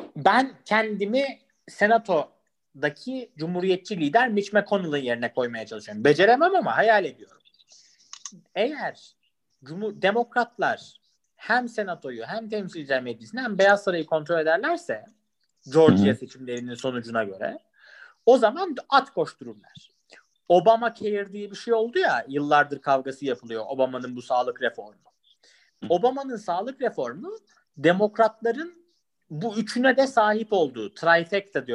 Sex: male